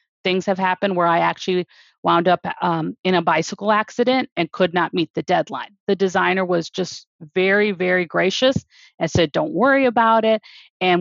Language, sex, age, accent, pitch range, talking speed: English, female, 40-59, American, 185-230 Hz, 180 wpm